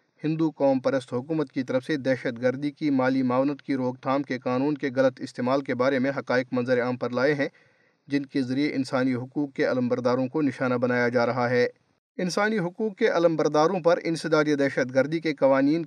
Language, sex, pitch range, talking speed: Urdu, male, 130-160 Hz, 205 wpm